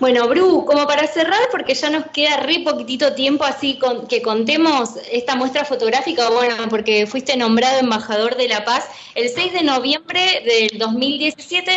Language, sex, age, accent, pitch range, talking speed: Spanish, female, 20-39, Argentinian, 230-280 Hz, 165 wpm